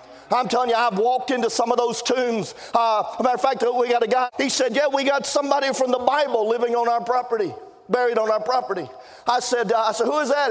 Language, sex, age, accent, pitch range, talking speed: English, male, 40-59, American, 230-255 Hz, 250 wpm